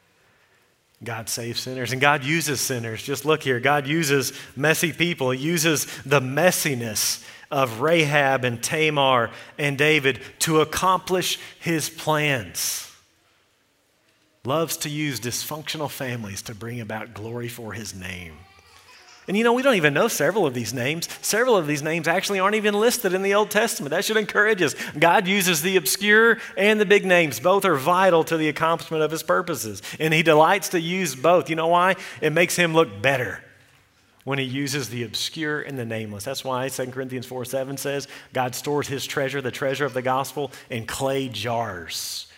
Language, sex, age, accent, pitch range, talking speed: English, male, 40-59, American, 120-160 Hz, 175 wpm